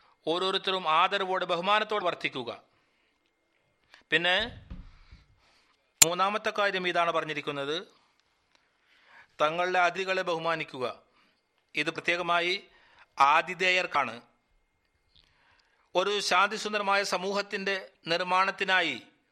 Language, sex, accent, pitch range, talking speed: Malayalam, male, native, 170-195 Hz, 60 wpm